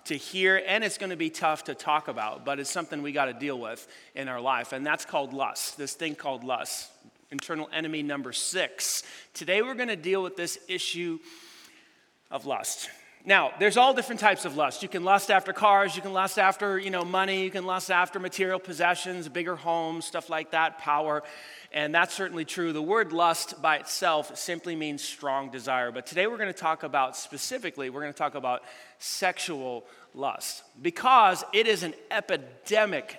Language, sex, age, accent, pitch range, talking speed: English, male, 30-49, American, 140-190 Hz, 195 wpm